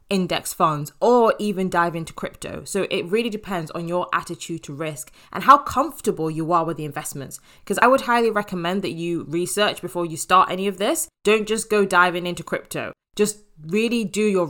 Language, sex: English, female